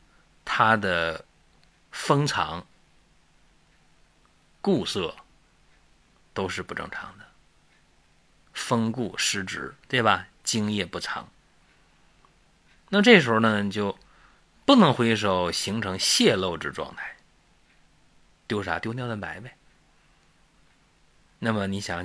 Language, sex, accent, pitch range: Chinese, male, native, 90-115 Hz